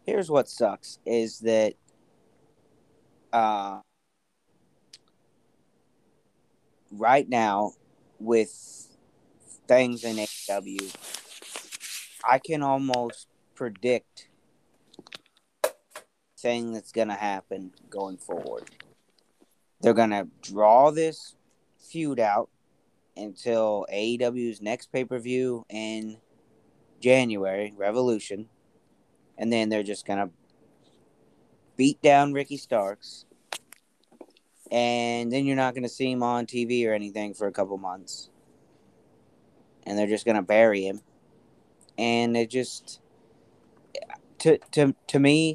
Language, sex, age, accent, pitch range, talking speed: English, male, 30-49, American, 105-125 Hz, 100 wpm